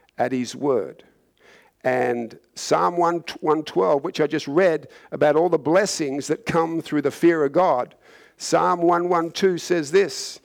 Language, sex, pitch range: English, male, 165-215 Hz